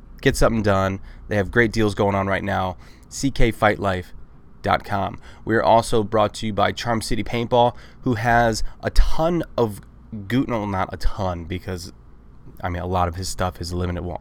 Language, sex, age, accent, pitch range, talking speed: English, male, 20-39, American, 95-120 Hz, 175 wpm